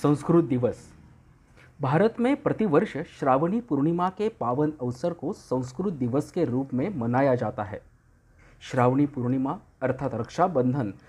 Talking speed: 125 wpm